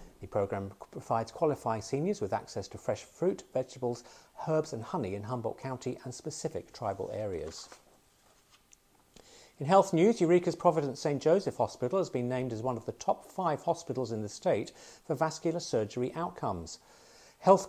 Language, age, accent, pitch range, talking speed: English, 40-59, British, 115-165 Hz, 160 wpm